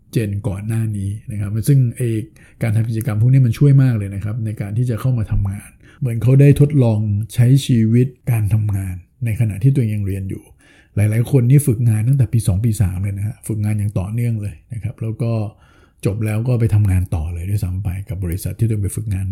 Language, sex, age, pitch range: Thai, male, 60-79, 105-130 Hz